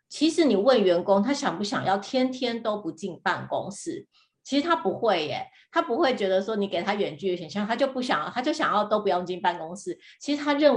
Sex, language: female, Chinese